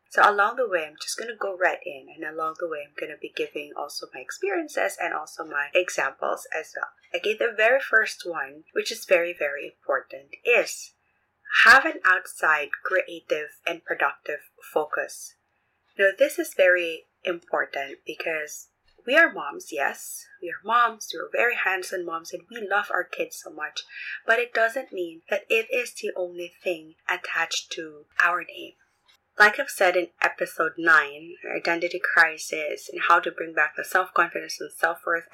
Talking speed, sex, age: 175 wpm, female, 20-39